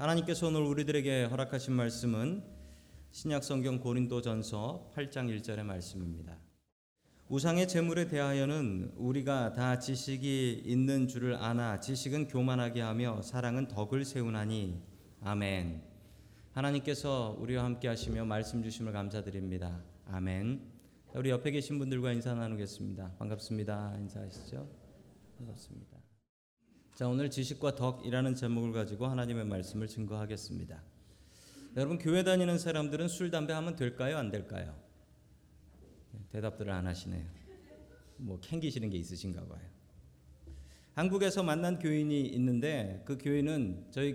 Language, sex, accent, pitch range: Korean, male, native, 105-140 Hz